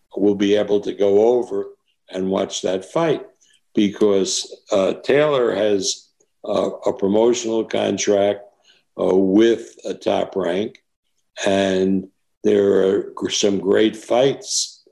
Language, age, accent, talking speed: English, 60-79, American, 115 wpm